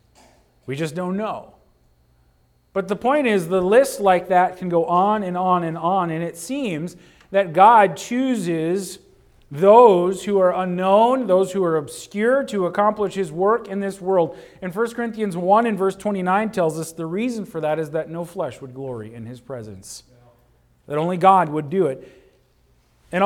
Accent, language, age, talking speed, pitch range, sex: American, English, 40-59, 180 wpm, 145-195 Hz, male